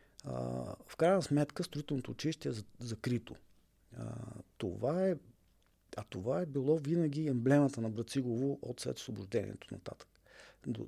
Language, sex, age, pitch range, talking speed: Bulgarian, male, 40-59, 105-130 Hz, 115 wpm